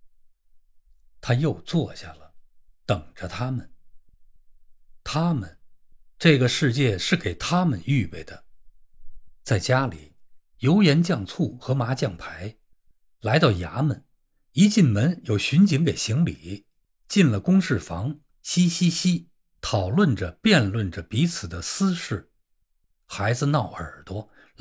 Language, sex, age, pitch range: Chinese, male, 50-69, 90-155 Hz